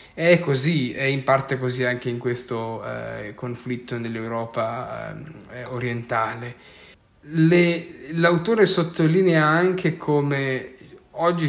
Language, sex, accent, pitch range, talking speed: Italian, male, native, 125-155 Hz, 95 wpm